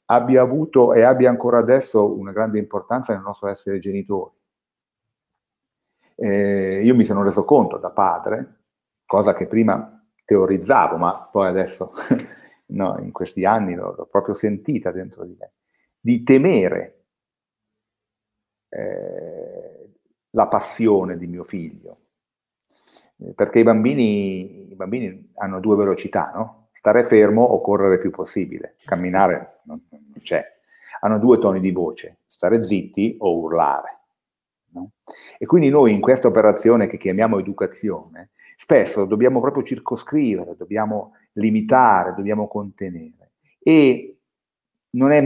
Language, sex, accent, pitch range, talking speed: Italian, male, native, 100-125 Hz, 120 wpm